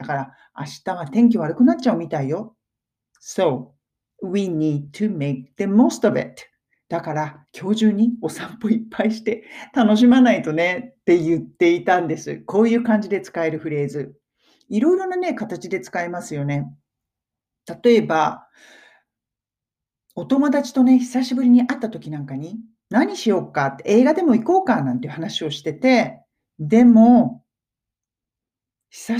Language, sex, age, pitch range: Japanese, male, 40-59, 155-235 Hz